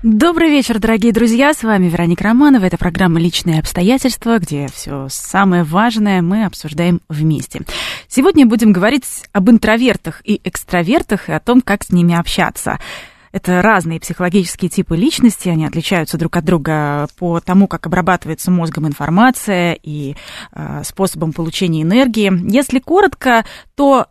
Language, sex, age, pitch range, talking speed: Russian, female, 20-39, 170-230 Hz, 140 wpm